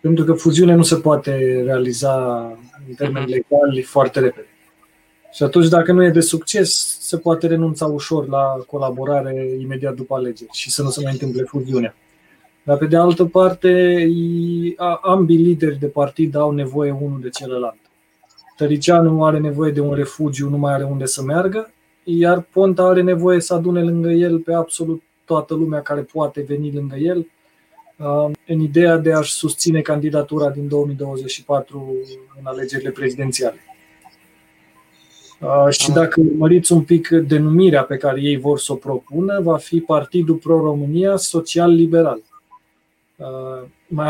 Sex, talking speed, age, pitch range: male, 145 wpm, 20-39, 140-170 Hz